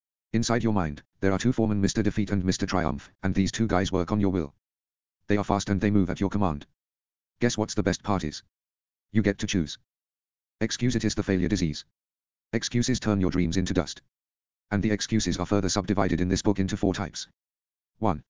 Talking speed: 205 wpm